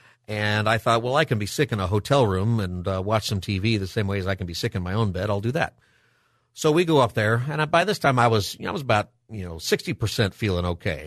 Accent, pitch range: American, 95-120 Hz